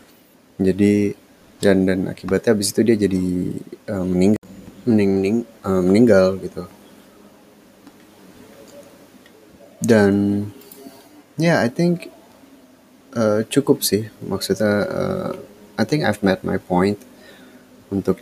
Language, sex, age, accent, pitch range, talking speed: Indonesian, male, 20-39, native, 95-105 Hz, 100 wpm